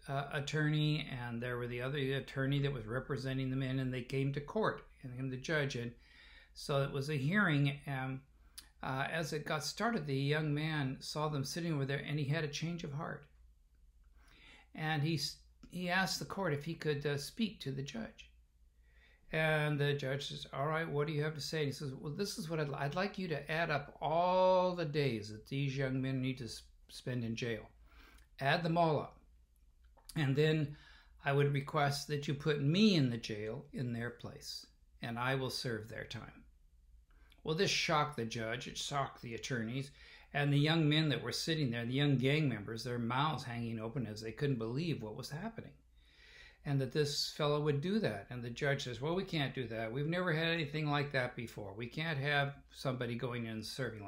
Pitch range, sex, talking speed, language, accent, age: 120-155 Hz, male, 210 wpm, English, American, 60-79